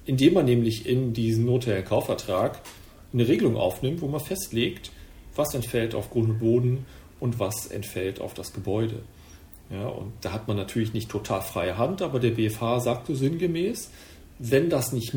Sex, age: male, 40-59